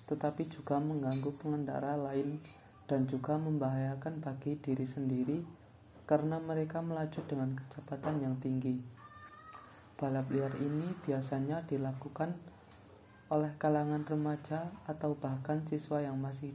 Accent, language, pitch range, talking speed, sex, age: native, Indonesian, 125-150 Hz, 110 wpm, male, 20-39